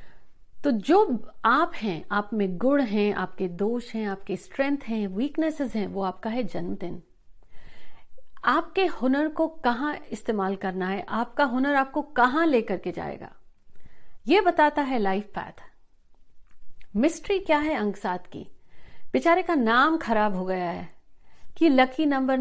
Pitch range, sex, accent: 205-285 Hz, female, native